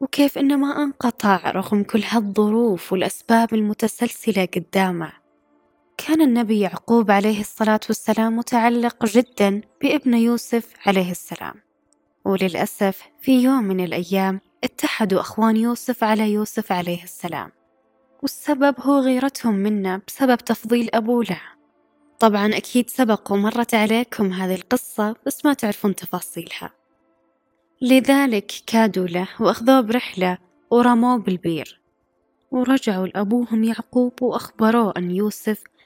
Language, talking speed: Arabic, 110 wpm